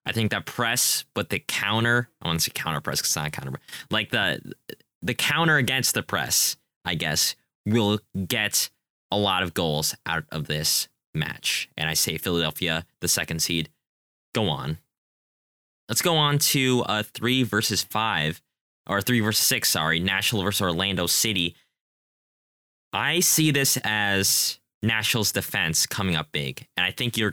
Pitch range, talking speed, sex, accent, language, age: 95-125 Hz, 160 wpm, male, American, English, 20-39